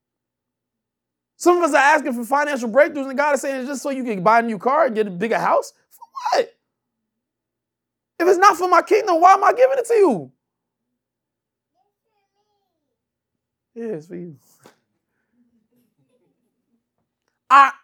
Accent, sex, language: American, male, English